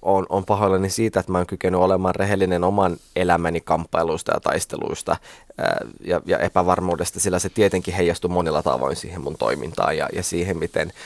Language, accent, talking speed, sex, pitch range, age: Finnish, native, 170 wpm, male, 90-105 Hz, 20-39